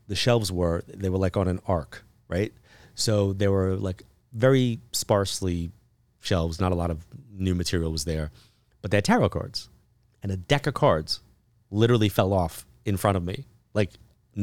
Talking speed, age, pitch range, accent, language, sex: 180 wpm, 30-49, 85-110 Hz, American, English, male